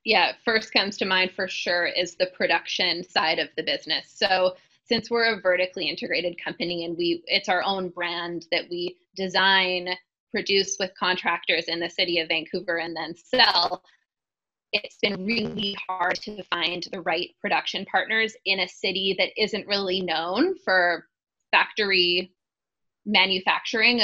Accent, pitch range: American, 175-205 Hz